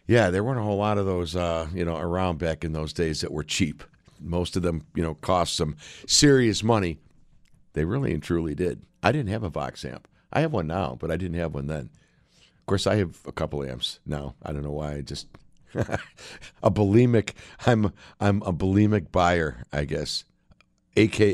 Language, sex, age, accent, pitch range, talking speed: English, male, 60-79, American, 85-110 Hz, 200 wpm